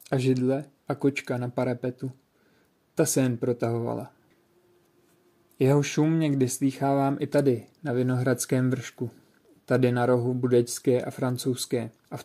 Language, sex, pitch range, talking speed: Czech, male, 125-140 Hz, 130 wpm